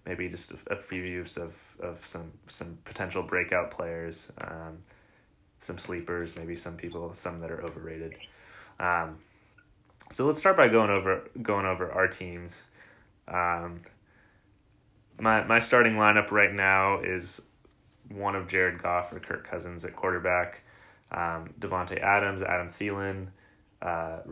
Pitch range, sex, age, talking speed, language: 85-100 Hz, male, 20-39, 135 wpm, English